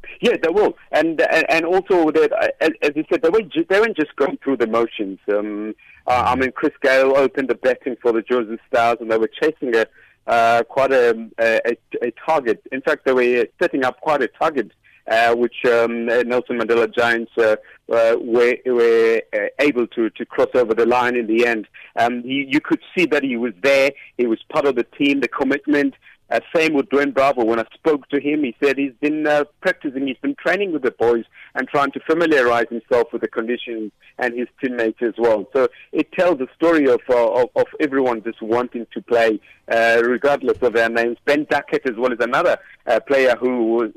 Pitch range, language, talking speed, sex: 115-150 Hz, English, 210 wpm, male